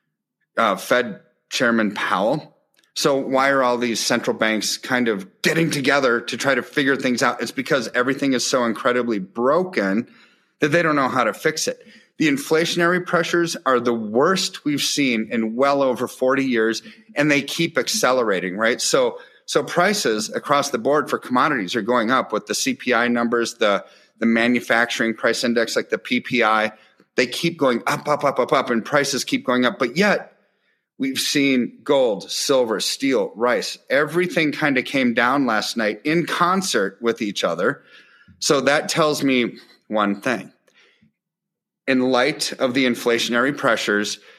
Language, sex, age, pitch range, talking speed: English, male, 30-49, 115-170 Hz, 165 wpm